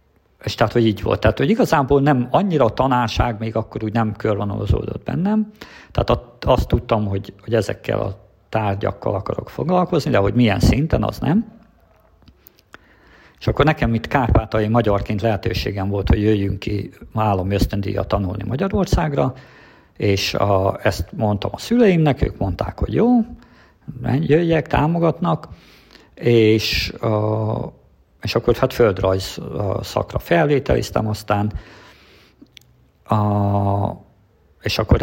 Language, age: Hungarian, 50-69